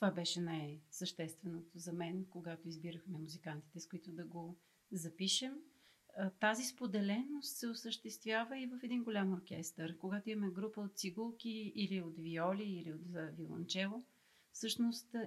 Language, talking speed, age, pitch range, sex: Bulgarian, 135 wpm, 40-59, 185-230 Hz, female